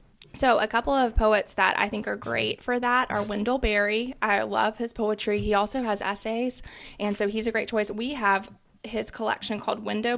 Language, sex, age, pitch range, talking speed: English, female, 20-39, 200-230 Hz, 205 wpm